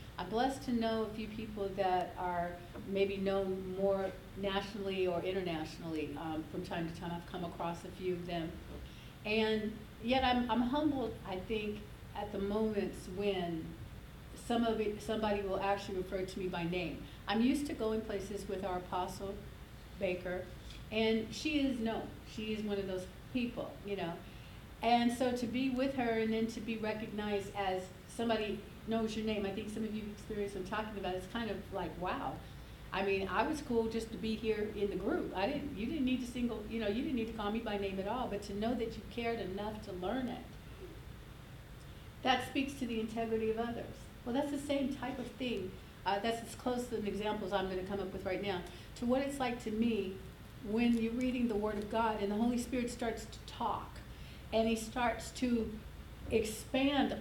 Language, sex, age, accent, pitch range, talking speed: English, female, 50-69, American, 195-230 Hz, 205 wpm